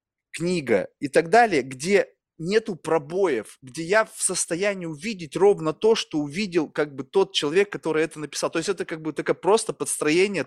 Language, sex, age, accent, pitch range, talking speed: Russian, male, 20-39, native, 150-195 Hz, 180 wpm